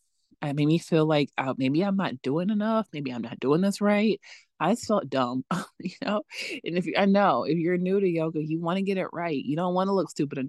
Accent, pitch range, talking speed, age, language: American, 140-190 Hz, 265 wpm, 20-39, English